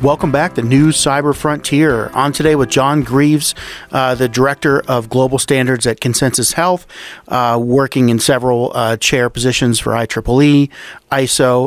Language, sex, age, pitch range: English, male, 40-59, 125-145 Hz